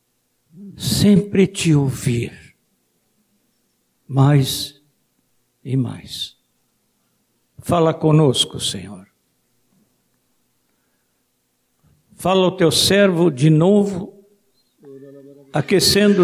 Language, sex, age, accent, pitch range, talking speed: Portuguese, male, 60-79, Brazilian, 140-200 Hz, 60 wpm